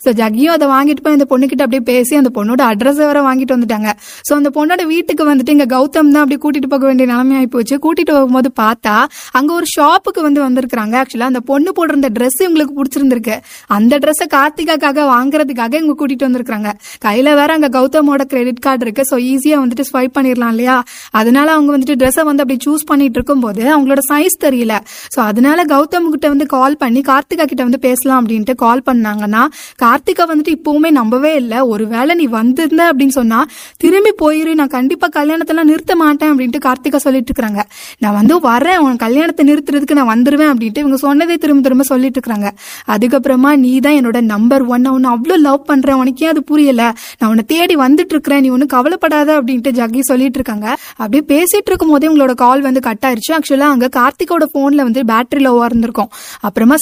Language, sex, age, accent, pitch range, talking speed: Tamil, female, 20-39, native, 255-300 Hz, 155 wpm